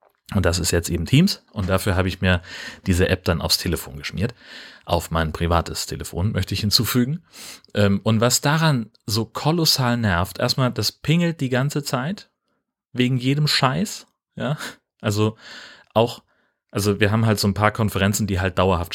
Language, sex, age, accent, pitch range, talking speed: German, male, 30-49, German, 90-115 Hz, 170 wpm